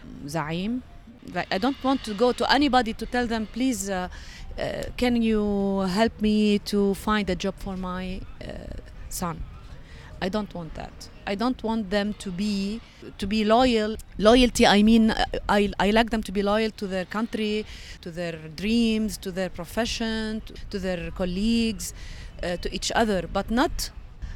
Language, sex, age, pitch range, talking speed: English, female, 30-49, 185-225 Hz, 170 wpm